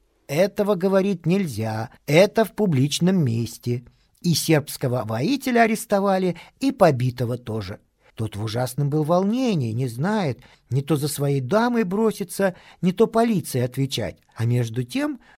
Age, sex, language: 50-69, male, Russian